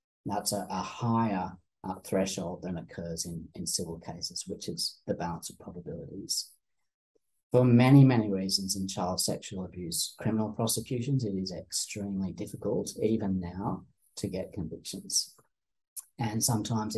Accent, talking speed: British, 140 wpm